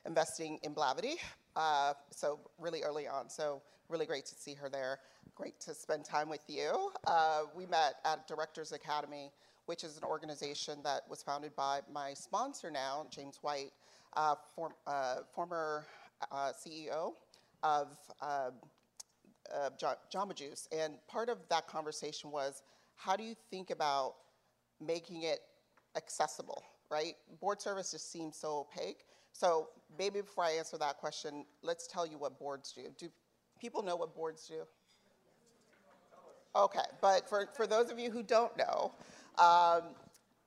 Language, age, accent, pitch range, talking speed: English, 40-59, American, 150-185 Hz, 150 wpm